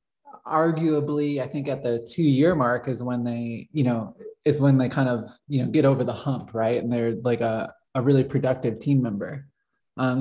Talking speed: 200 wpm